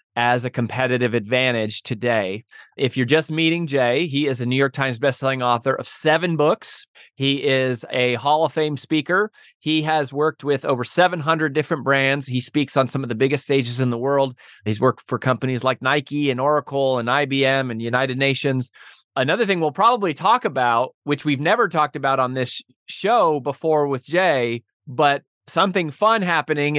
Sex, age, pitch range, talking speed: male, 30-49, 135-165 Hz, 180 wpm